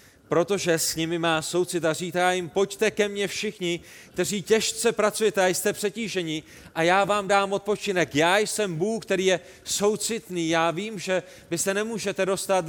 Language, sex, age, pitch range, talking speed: Czech, male, 30-49, 170-200 Hz, 170 wpm